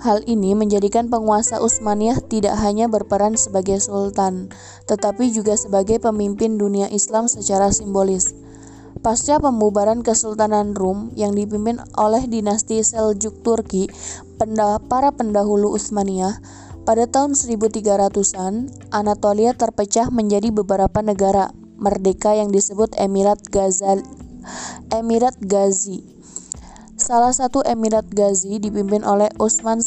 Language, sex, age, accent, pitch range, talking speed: Indonesian, female, 20-39, native, 200-225 Hz, 105 wpm